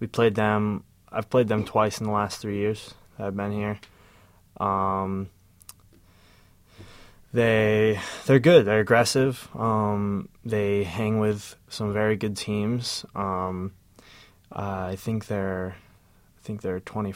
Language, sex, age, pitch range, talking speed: English, male, 20-39, 95-105 Hz, 130 wpm